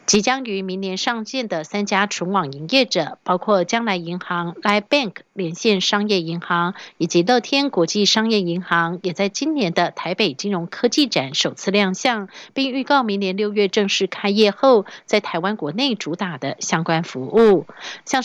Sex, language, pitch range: female, German, 175-230 Hz